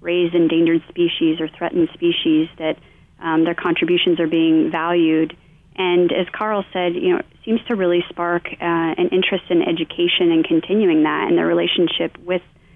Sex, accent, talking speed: female, American, 170 wpm